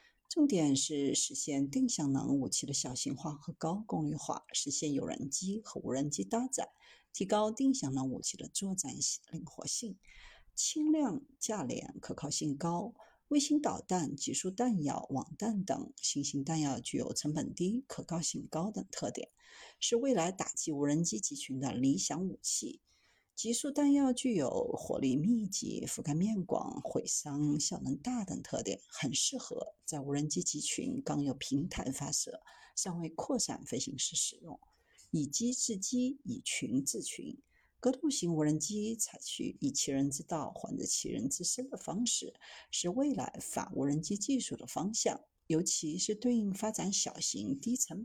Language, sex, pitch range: Chinese, female, 150-250 Hz